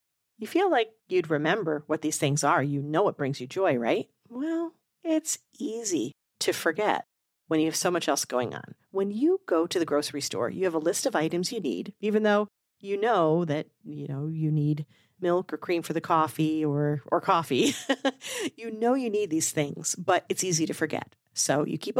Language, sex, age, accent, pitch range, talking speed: English, female, 40-59, American, 150-210 Hz, 205 wpm